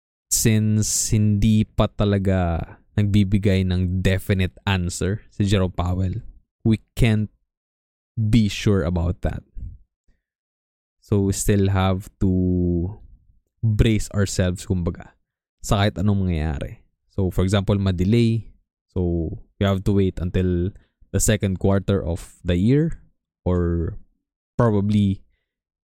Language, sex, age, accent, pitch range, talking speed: English, male, 20-39, Filipino, 90-105 Hz, 110 wpm